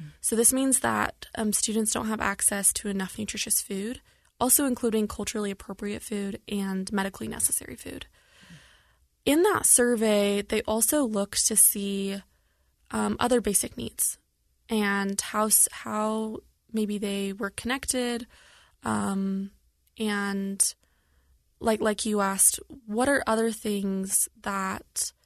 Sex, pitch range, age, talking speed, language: female, 195-225 Hz, 20-39, 125 wpm, English